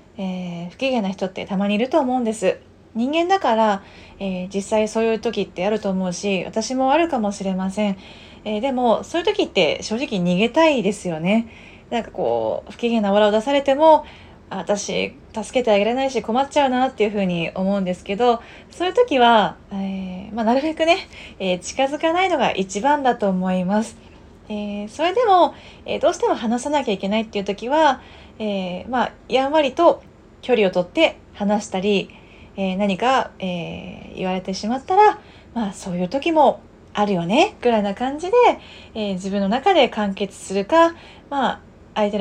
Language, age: Japanese, 20-39